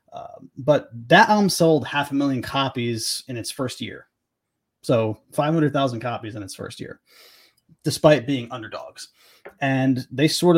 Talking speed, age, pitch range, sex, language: 145 wpm, 30-49, 120-150 Hz, male, English